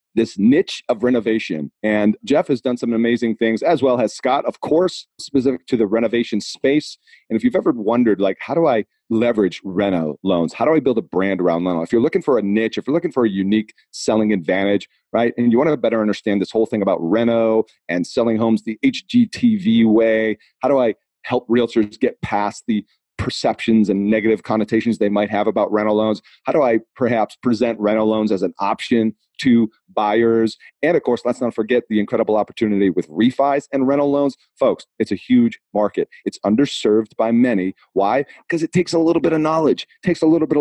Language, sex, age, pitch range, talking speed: English, male, 40-59, 110-150 Hz, 210 wpm